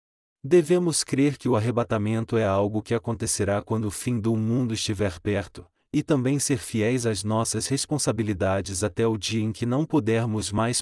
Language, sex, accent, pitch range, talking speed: Portuguese, male, Brazilian, 105-125 Hz, 170 wpm